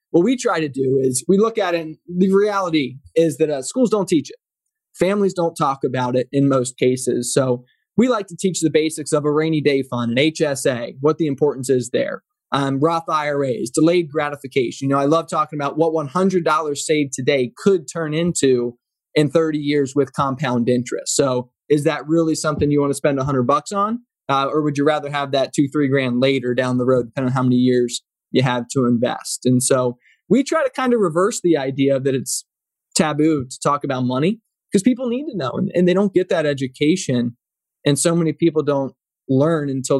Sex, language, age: male, English, 20-39